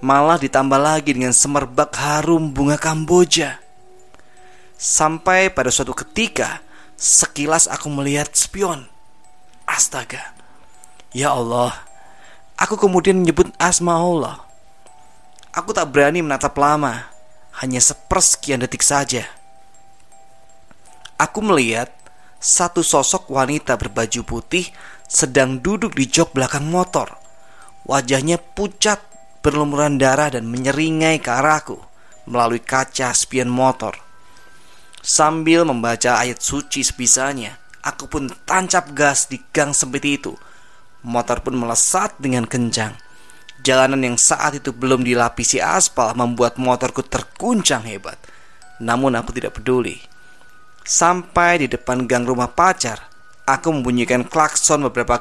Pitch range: 125-160 Hz